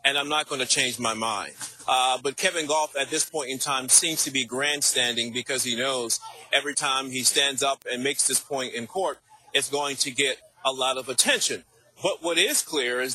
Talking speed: 220 wpm